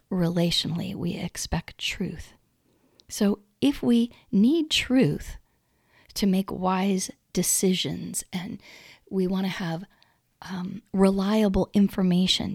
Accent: American